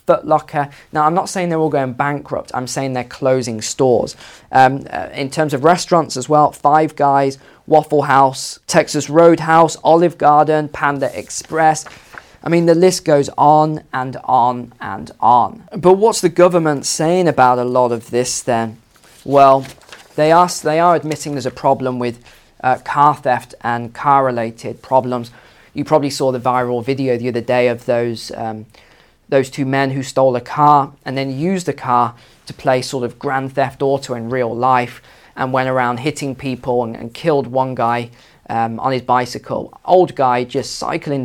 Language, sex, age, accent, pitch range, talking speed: English, male, 20-39, British, 120-150 Hz, 175 wpm